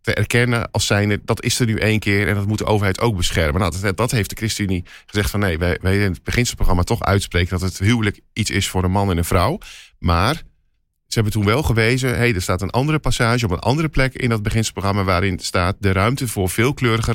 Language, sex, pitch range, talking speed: Dutch, male, 95-115 Hz, 235 wpm